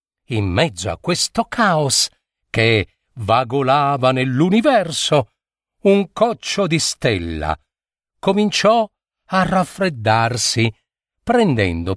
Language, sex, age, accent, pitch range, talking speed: Italian, male, 50-69, native, 110-165 Hz, 80 wpm